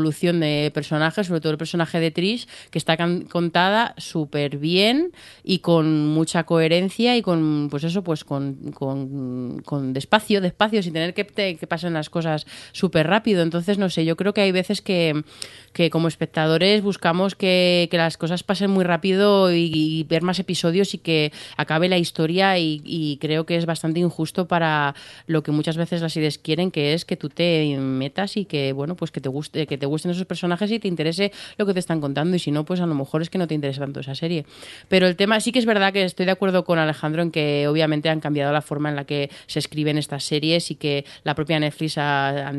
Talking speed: 220 wpm